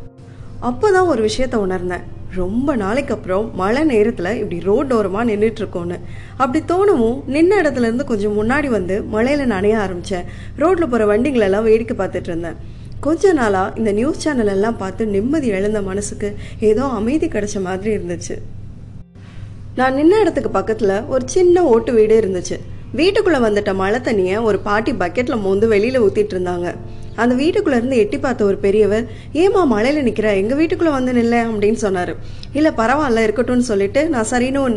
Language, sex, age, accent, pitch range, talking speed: Tamil, female, 20-39, native, 195-255 Hz, 150 wpm